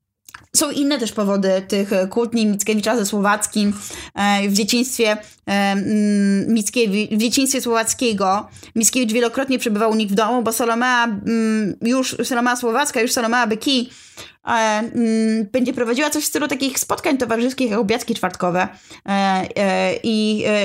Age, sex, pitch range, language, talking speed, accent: 20-39, female, 200-240 Hz, Polish, 120 wpm, native